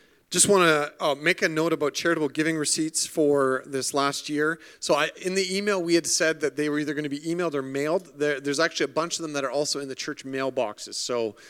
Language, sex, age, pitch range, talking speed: English, male, 40-59, 120-150 Hz, 250 wpm